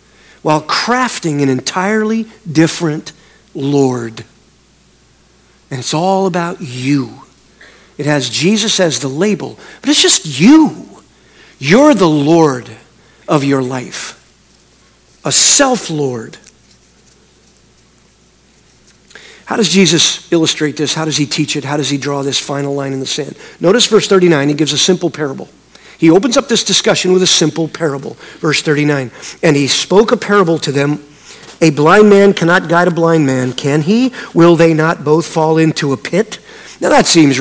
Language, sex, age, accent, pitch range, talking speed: English, male, 50-69, American, 150-215 Hz, 155 wpm